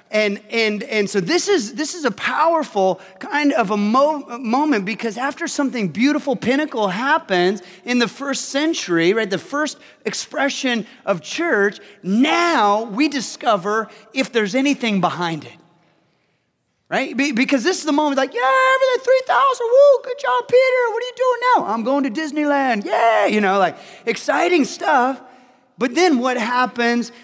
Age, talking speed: 30-49, 165 wpm